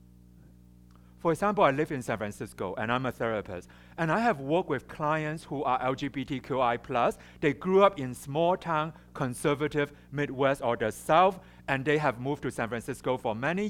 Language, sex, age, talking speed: English, male, 60-79, 175 wpm